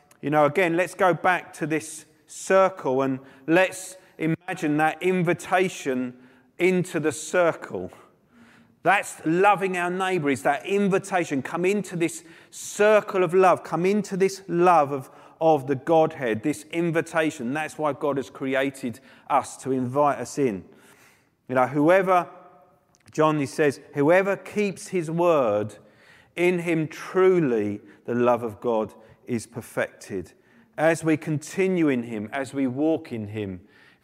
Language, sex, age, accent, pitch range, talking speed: English, male, 40-59, British, 140-180 Hz, 140 wpm